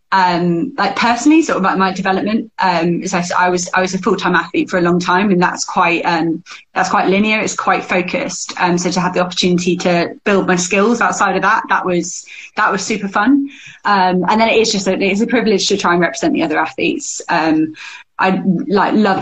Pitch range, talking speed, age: 180-205 Hz, 230 wpm, 20-39